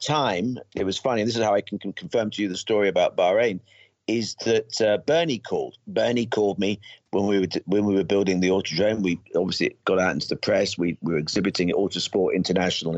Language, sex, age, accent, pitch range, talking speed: English, male, 50-69, British, 90-115 Hz, 225 wpm